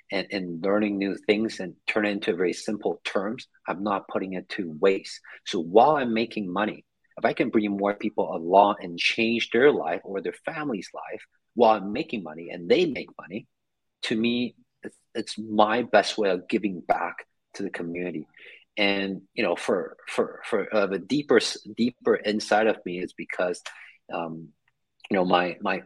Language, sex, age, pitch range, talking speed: English, male, 40-59, 95-110 Hz, 185 wpm